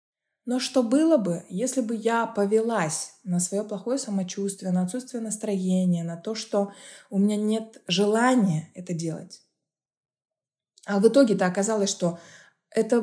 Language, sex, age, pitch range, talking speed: Russian, female, 20-39, 175-215 Hz, 140 wpm